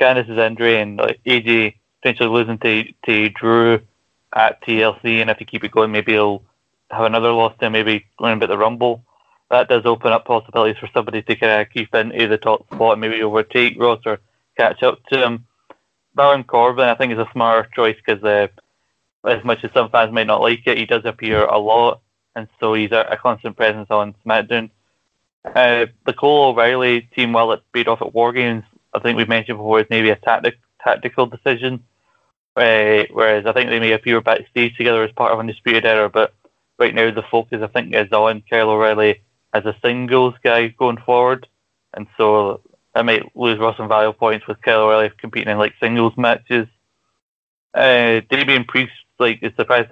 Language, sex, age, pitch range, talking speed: English, male, 20-39, 110-120 Hz, 195 wpm